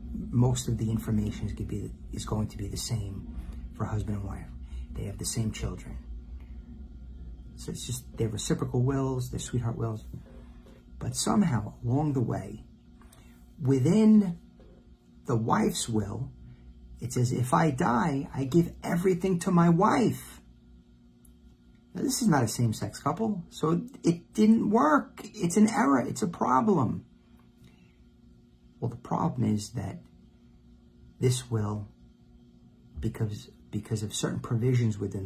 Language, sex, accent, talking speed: English, male, American, 135 wpm